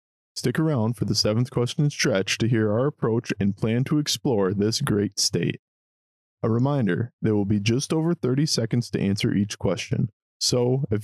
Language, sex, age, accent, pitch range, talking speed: English, male, 20-39, American, 95-130 Hz, 180 wpm